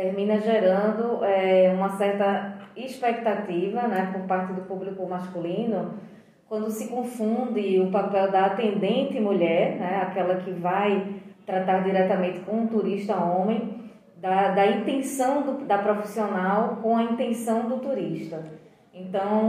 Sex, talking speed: female, 130 wpm